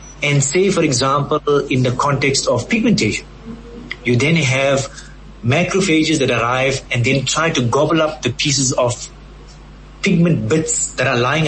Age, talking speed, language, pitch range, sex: 30-49, 150 wpm, English, 125-160 Hz, male